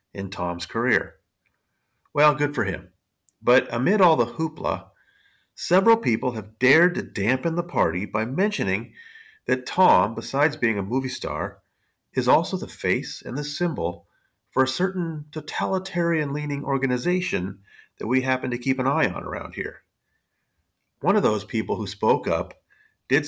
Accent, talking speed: American, 150 wpm